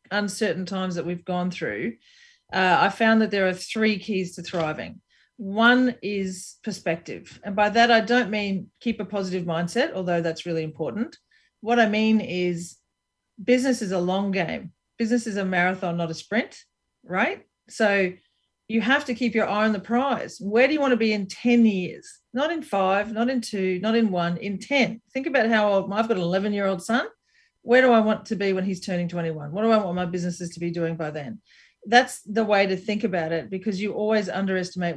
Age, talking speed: 40-59, 205 wpm